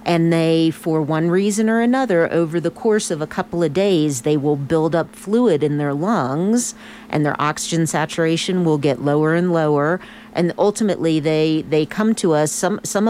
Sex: female